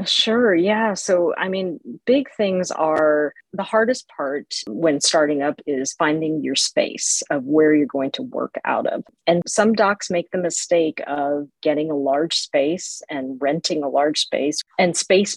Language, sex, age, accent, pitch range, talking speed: English, female, 40-59, American, 150-215 Hz, 170 wpm